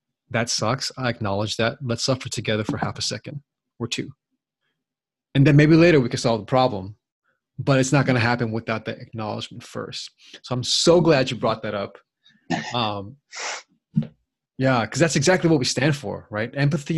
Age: 20-39